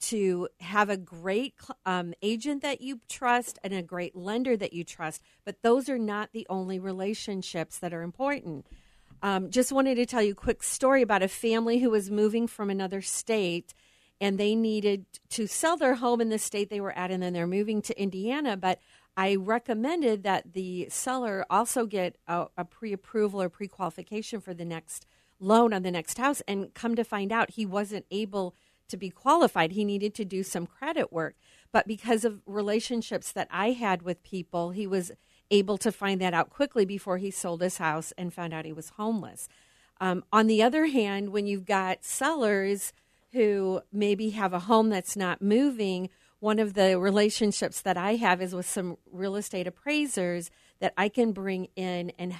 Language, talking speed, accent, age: English, 190 wpm, American, 40-59